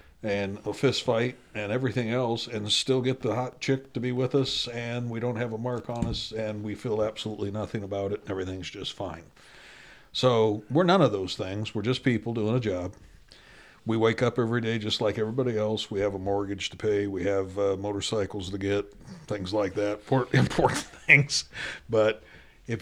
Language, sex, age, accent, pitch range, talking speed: English, male, 60-79, American, 110-140 Hz, 200 wpm